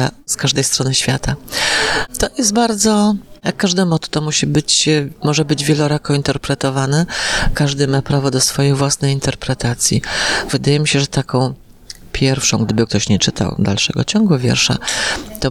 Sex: female